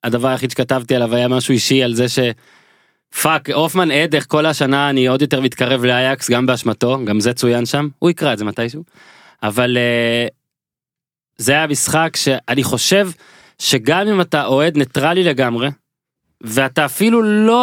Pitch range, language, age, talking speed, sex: 125-160 Hz, Hebrew, 20-39, 150 wpm, male